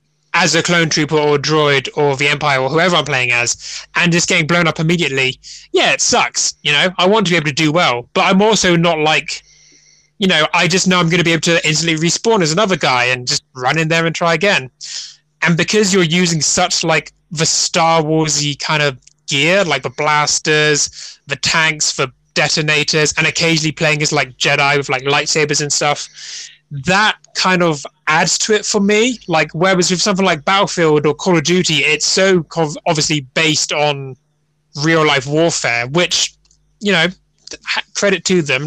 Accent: British